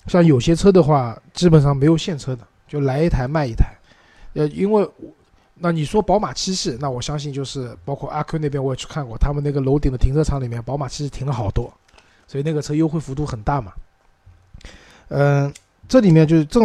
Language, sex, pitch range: Chinese, male, 130-165 Hz